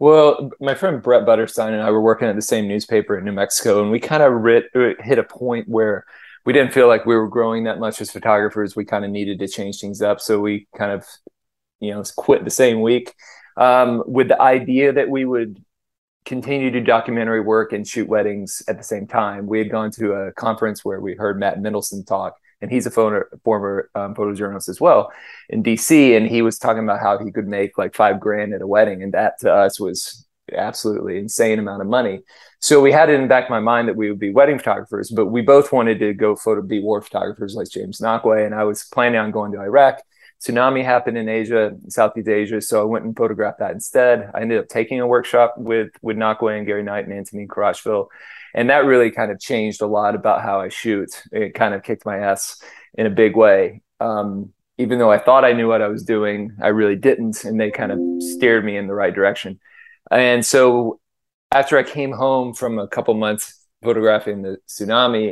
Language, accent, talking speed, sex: English, American, 225 wpm, male